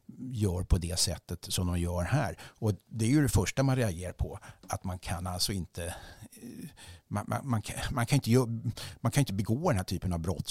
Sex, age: male, 60-79